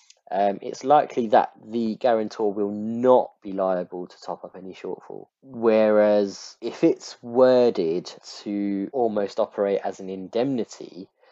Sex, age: male, 20-39